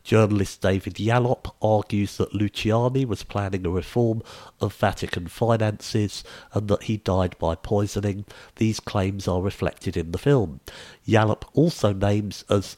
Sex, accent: male, British